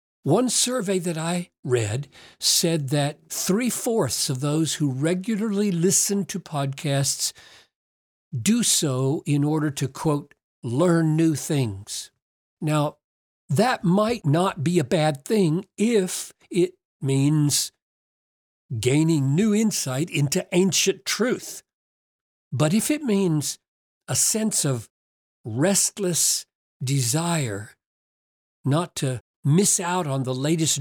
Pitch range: 140-195 Hz